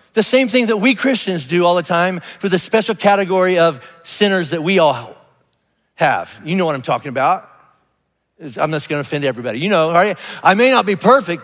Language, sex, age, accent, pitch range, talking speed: English, male, 50-69, American, 165-215 Hz, 210 wpm